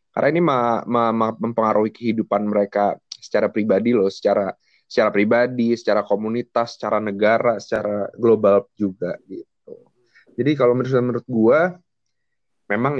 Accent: native